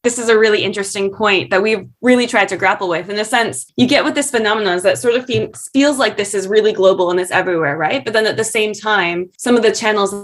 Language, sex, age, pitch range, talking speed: English, female, 20-39, 180-225 Hz, 260 wpm